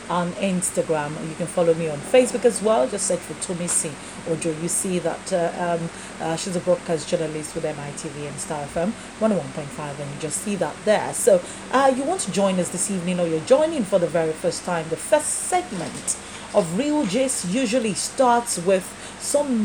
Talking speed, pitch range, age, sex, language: 200 wpm, 175-250 Hz, 40-59, female, English